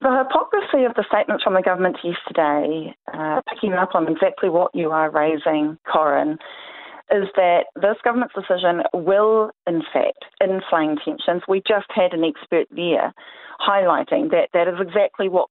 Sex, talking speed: female, 160 wpm